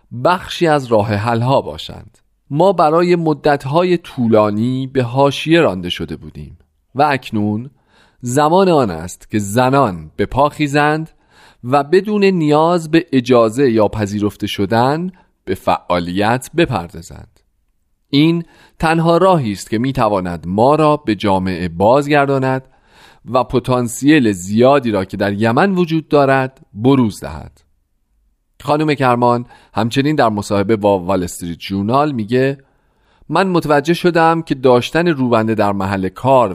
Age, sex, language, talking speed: 40-59, male, Persian, 125 wpm